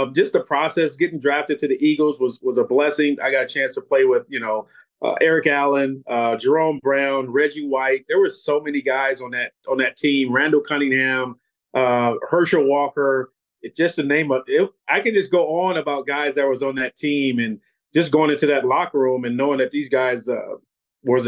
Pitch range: 130-160 Hz